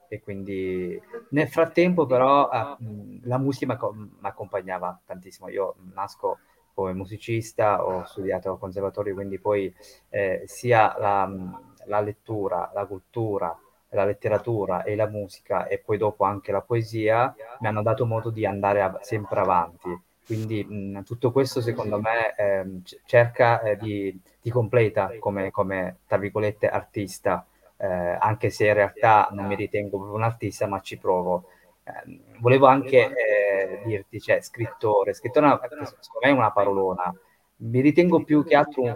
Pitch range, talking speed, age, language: 100-125 Hz, 145 wpm, 20-39, Italian